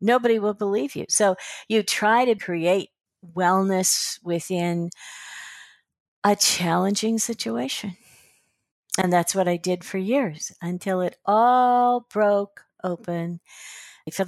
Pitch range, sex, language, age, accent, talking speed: 155-200 Hz, female, English, 60-79, American, 115 wpm